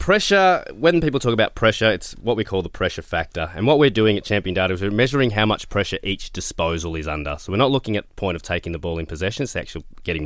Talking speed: 270 wpm